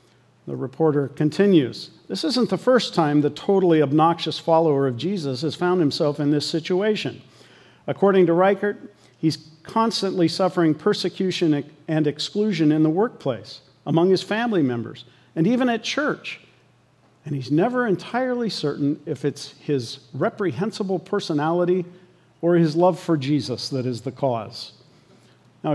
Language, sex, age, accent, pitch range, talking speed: English, male, 50-69, American, 135-180 Hz, 140 wpm